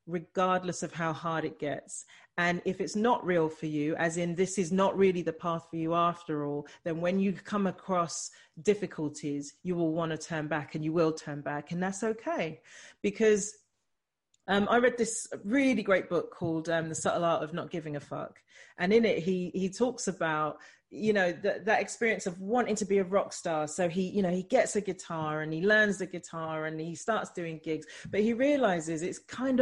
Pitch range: 165-215 Hz